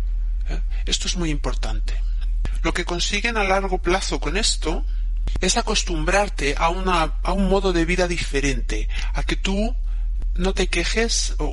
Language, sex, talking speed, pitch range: Spanish, male, 155 wpm, 140-185 Hz